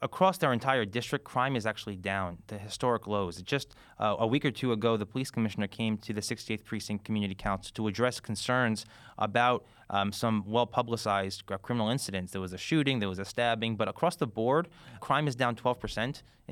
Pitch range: 105-130 Hz